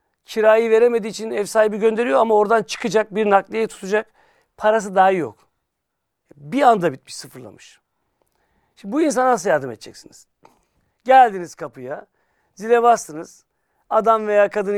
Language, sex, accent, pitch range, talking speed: Turkish, male, native, 155-215 Hz, 130 wpm